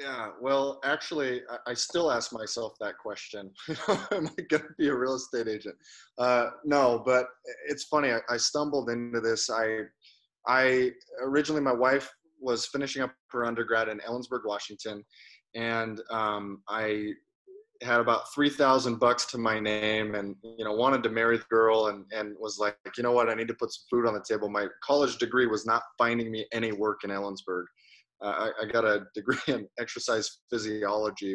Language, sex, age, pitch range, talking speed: English, male, 20-39, 105-130 Hz, 175 wpm